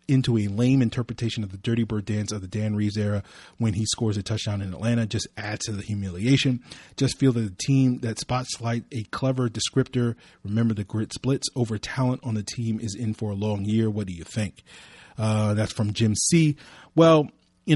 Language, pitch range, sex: English, 105-120 Hz, male